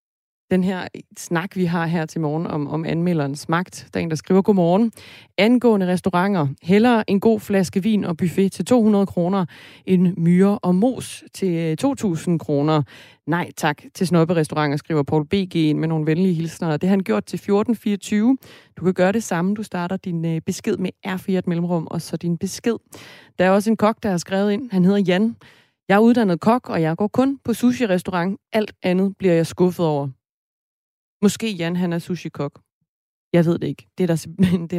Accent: native